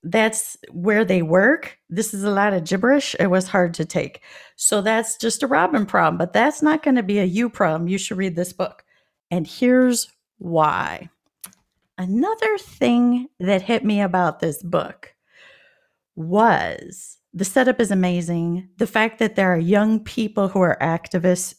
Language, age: English, 40-59